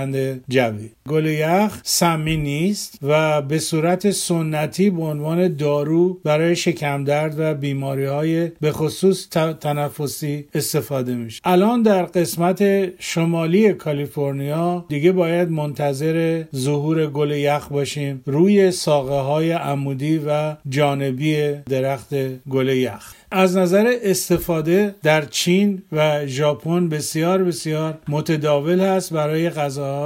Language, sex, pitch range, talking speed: Persian, male, 145-175 Hz, 110 wpm